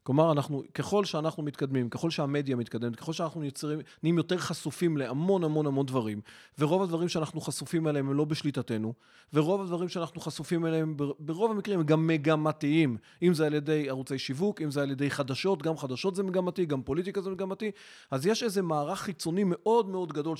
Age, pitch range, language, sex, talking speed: 30-49, 145-190 Hz, Hebrew, male, 115 wpm